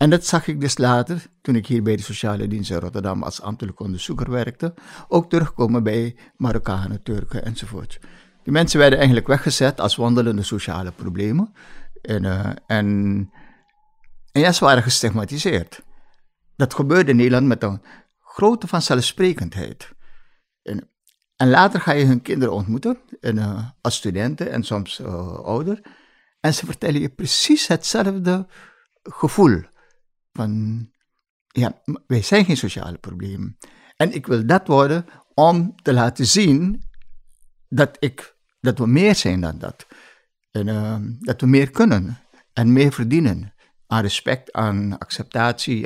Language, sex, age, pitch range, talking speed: Dutch, male, 60-79, 105-165 Hz, 140 wpm